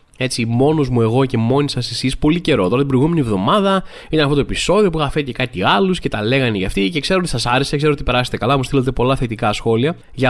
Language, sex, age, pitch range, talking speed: Greek, male, 20-39, 125-165 Hz, 255 wpm